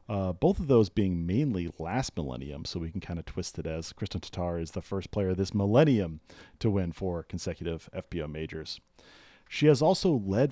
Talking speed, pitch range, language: 195 wpm, 90-110 Hz, English